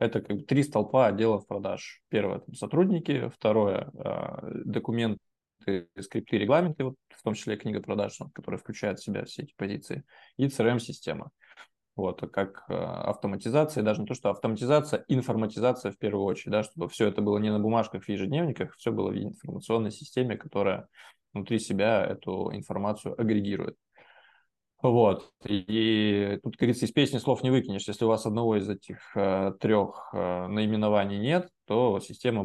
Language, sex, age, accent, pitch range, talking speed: Russian, male, 20-39, native, 100-120 Hz, 150 wpm